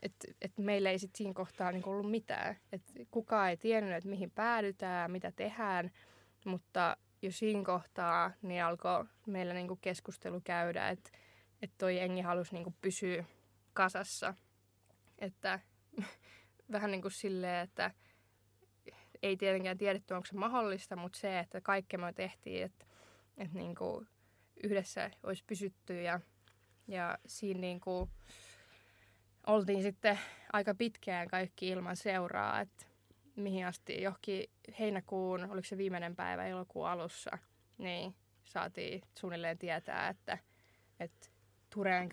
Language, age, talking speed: Finnish, 20-39, 125 wpm